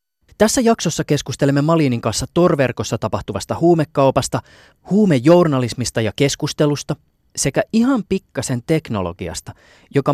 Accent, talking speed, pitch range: native, 95 wpm, 115-165 Hz